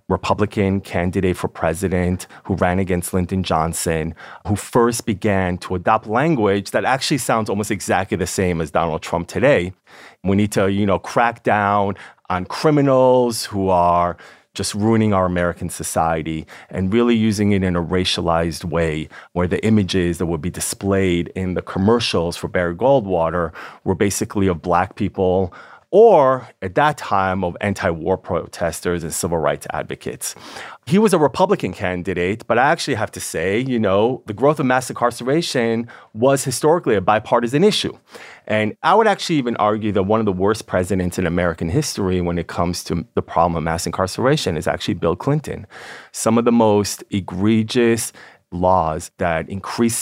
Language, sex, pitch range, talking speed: English, male, 90-110 Hz, 165 wpm